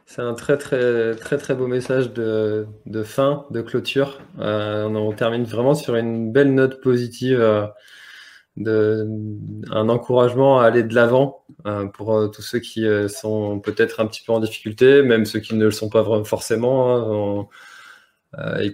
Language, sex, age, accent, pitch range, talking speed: French, male, 20-39, French, 105-125 Hz, 185 wpm